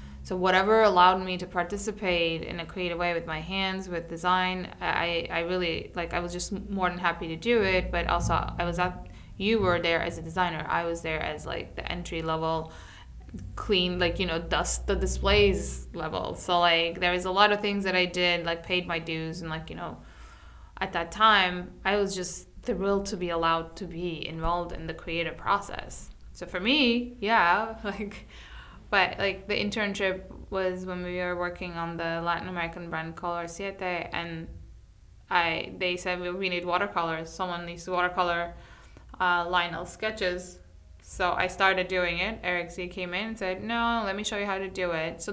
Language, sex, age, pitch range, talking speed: English, female, 20-39, 170-195 Hz, 195 wpm